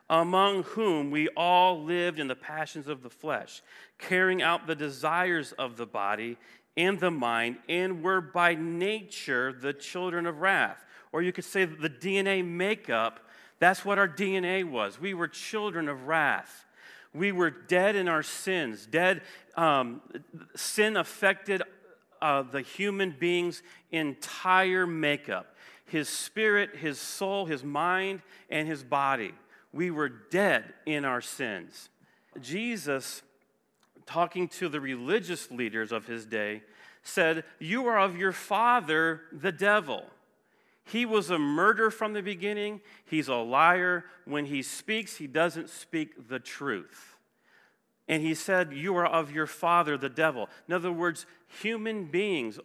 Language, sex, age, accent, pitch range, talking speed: English, male, 40-59, American, 150-195 Hz, 145 wpm